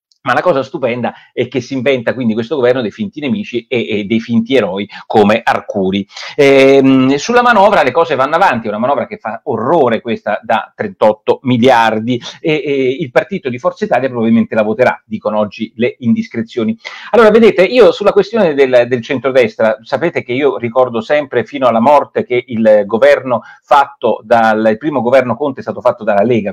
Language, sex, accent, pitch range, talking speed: Italian, male, native, 115-180 Hz, 185 wpm